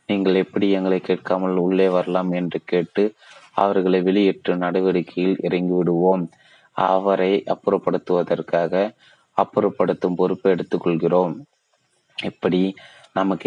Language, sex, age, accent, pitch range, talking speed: Tamil, male, 30-49, native, 90-95 Hz, 85 wpm